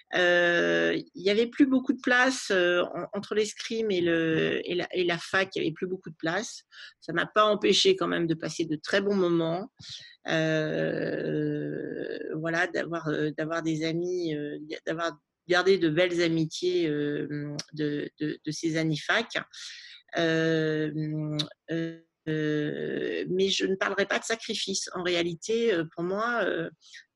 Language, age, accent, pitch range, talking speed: French, 40-59, French, 160-200 Hz, 155 wpm